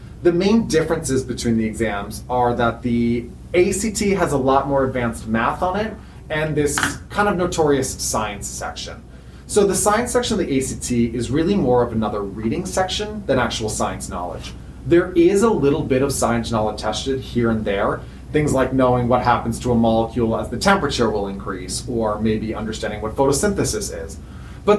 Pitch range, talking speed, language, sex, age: 105-145 Hz, 180 wpm, English, male, 30-49